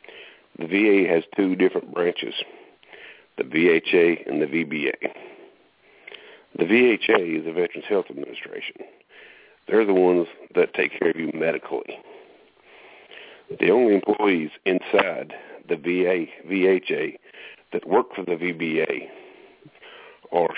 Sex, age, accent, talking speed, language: male, 50-69, American, 115 wpm, English